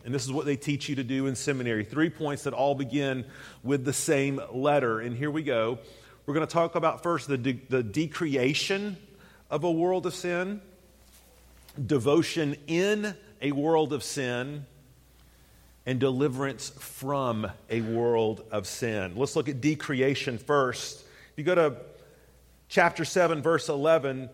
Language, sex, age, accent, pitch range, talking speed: English, male, 40-59, American, 130-155 Hz, 160 wpm